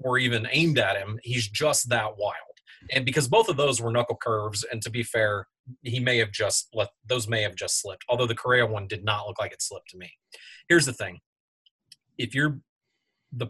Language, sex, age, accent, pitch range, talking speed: English, male, 30-49, American, 110-130 Hz, 220 wpm